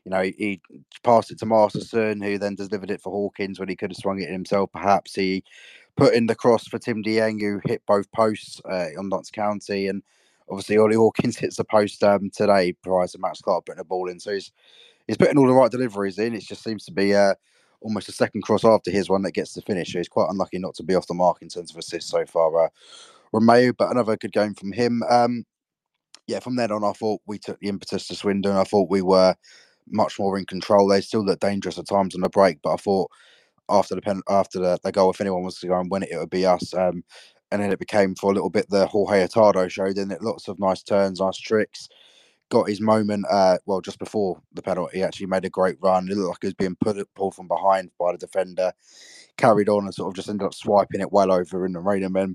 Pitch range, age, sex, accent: 95-105 Hz, 20-39, male, British